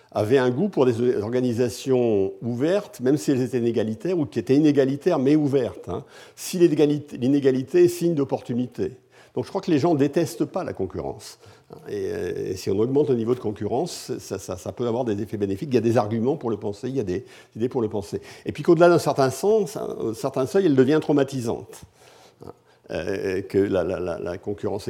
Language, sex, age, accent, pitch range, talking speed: French, male, 50-69, French, 105-170 Hz, 200 wpm